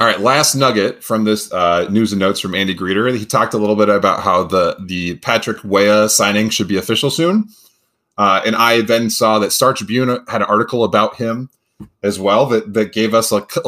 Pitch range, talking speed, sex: 100-125 Hz, 220 wpm, male